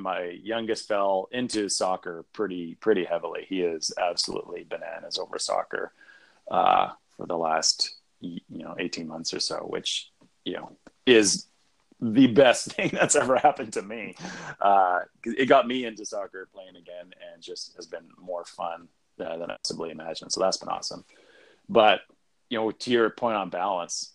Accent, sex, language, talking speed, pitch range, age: American, male, English, 165 wpm, 100-130 Hz, 30-49